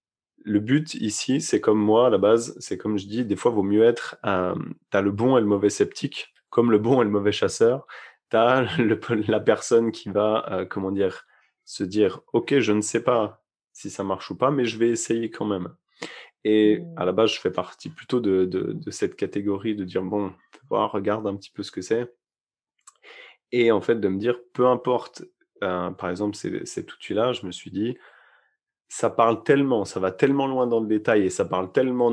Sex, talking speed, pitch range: male, 220 wpm, 100-120 Hz